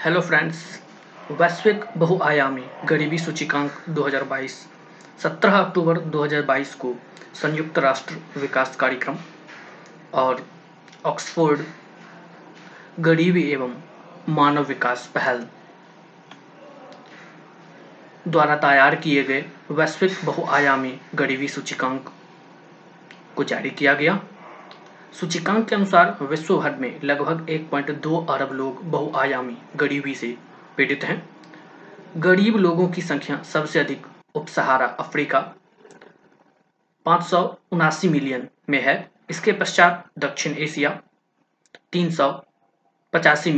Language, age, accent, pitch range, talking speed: Hindi, 20-39, native, 140-175 Hz, 90 wpm